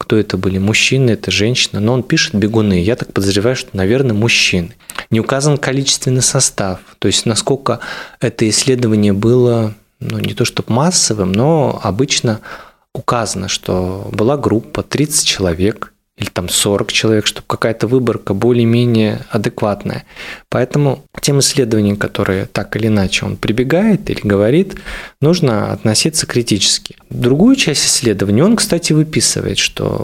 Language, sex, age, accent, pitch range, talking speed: Russian, male, 20-39, native, 105-135 Hz, 140 wpm